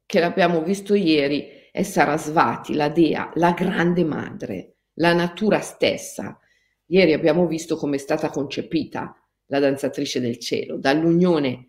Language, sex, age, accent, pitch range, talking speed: Italian, female, 50-69, native, 140-220 Hz, 135 wpm